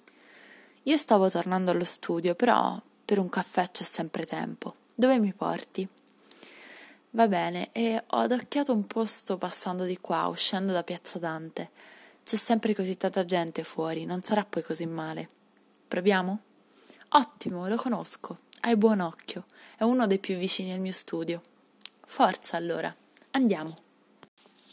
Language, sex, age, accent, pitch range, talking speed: Italian, female, 20-39, native, 175-215 Hz, 140 wpm